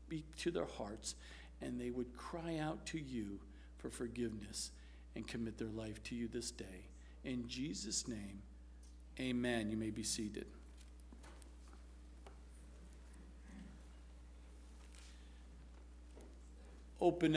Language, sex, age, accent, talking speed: English, male, 50-69, American, 105 wpm